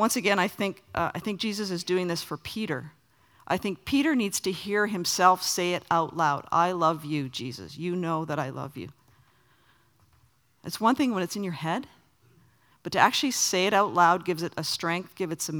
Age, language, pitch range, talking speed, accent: 50-69, English, 125-180 Hz, 210 wpm, American